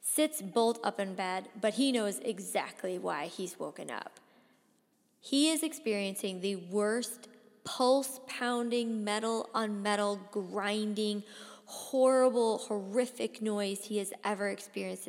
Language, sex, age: English, female, 20-39